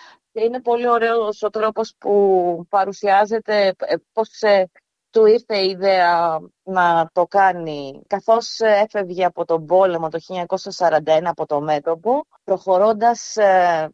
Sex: female